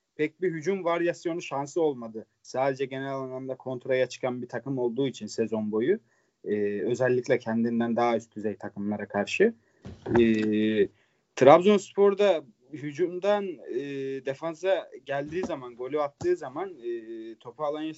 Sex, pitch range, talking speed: male, 115-150 Hz, 125 wpm